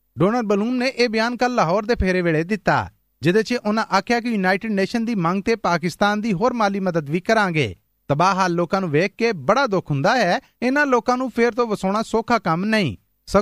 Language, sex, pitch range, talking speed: Punjabi, male, 175-235 Hz, 205 wpm